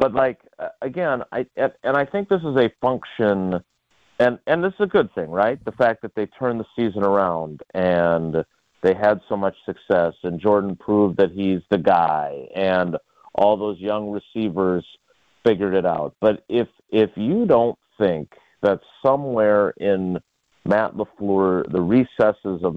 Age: 50-69